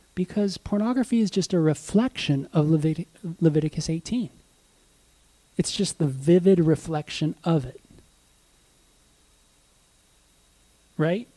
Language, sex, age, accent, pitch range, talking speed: English, male, 30-49, American, 130-180 Hz, 90 wpm